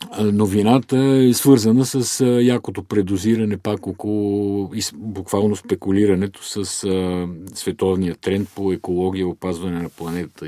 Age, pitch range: 50-69, 90-110 Hz